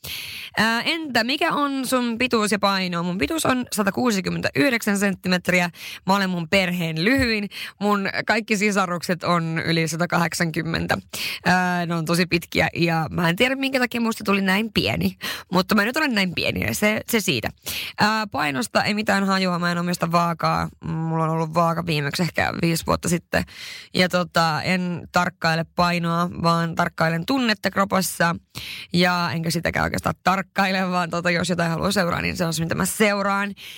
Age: 20-39